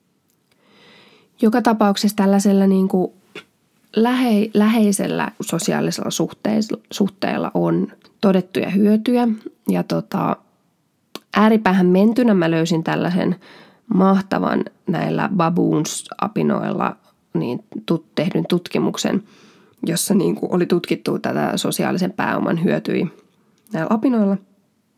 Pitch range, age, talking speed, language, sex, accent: 180-220 Hz, 20-39, 85 wpm, Finnish, female, native